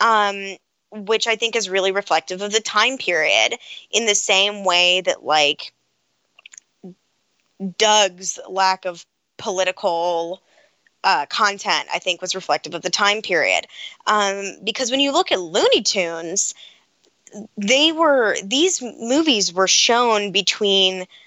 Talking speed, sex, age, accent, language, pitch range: 125 wpm, female, 10-29, American, English, 185-225 Hz